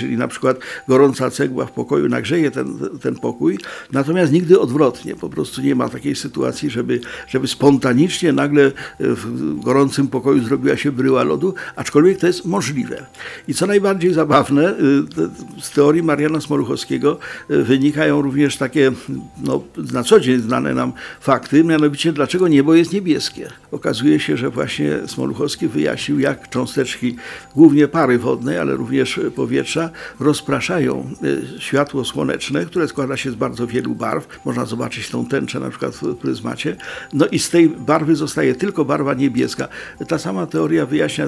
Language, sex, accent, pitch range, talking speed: Polish, male, native, 125-155 Hz, 150 wpm